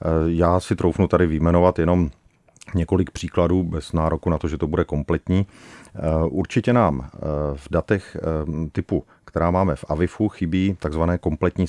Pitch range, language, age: 80-90 Hz, Czech, 40-59